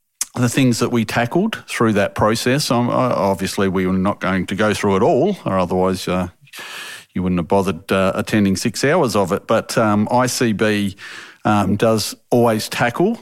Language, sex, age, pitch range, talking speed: English, male, 40-59, 105-120 Hz, 175 wpm